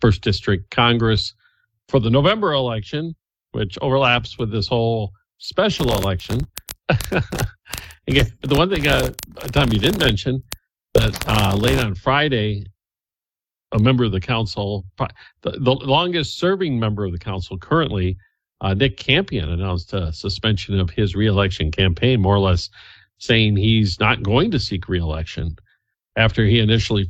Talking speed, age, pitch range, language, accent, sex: 145 wpm, 50-69, 95-120 Hz, English, American, male